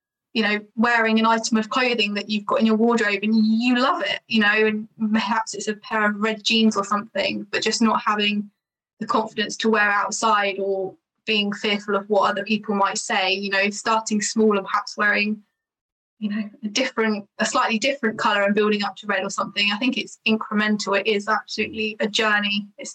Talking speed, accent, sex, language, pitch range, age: 205 wpm, British, female, English, 200-220 Hz, 10-29